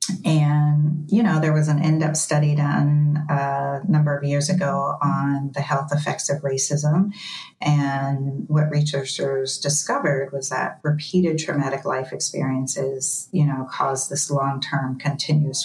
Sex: female